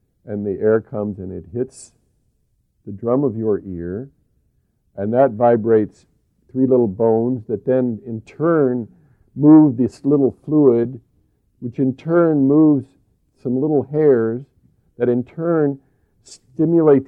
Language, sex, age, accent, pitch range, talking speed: English, male, 50-69, American, 105-135 Hz, 130 wpm